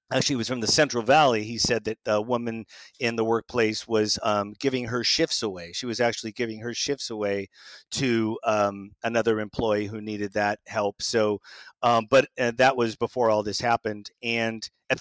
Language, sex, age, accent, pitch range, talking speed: English, male, 40-59, American, 110-135 Hz, 190 wpm